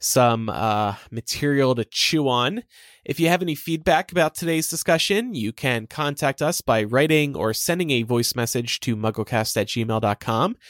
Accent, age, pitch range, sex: American, 20-39, 120-165 Hz, male